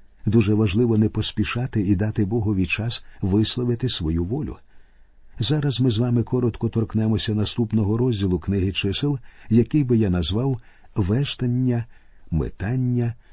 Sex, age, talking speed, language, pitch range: male, 50-69, 120 wpm, Ukrainian, 95-125 Hz